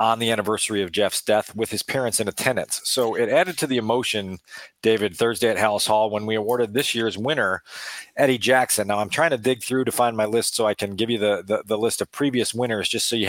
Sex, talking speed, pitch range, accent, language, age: male, 250 wpm, 115-150 Hz, American, English, 40-59